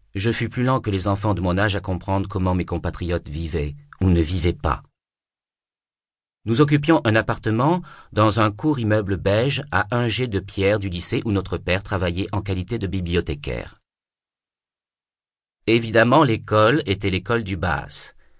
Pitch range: 90-115 Hz